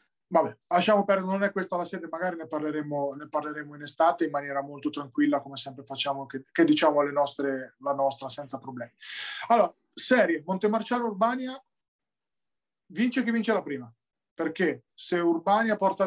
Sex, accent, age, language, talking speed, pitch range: male, native, 20-39, Italian, 160 wpm, 140-175 Hz